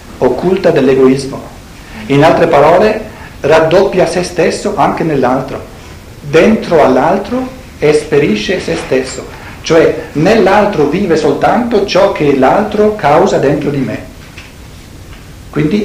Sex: male